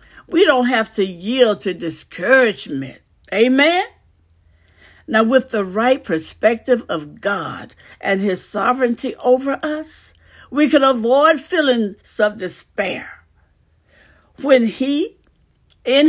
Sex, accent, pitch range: female, American, 185-285 Hz